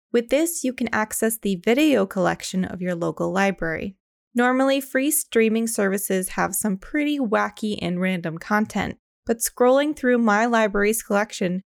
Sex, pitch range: female, 195-245 Hz